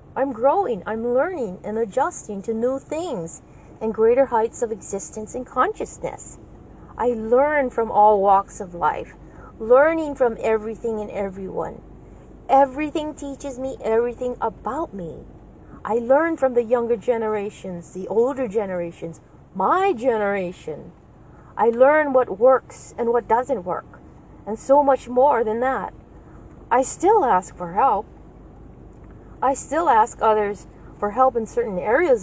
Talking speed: 135 wpm